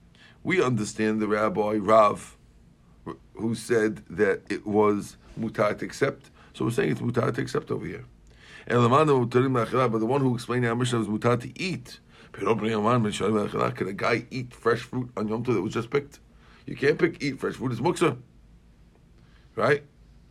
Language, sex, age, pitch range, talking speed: English, male, 50-69, 110-130 Hz, 165 wpm